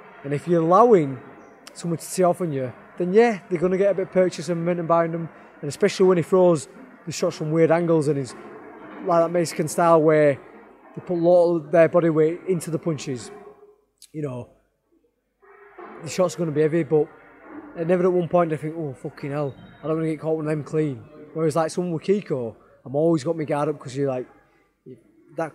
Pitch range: 145-175 Hz